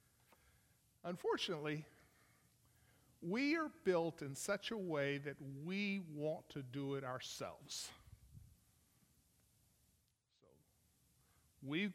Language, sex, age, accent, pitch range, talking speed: English, male, 50-69, American, 120-155 Hz, 85 wpm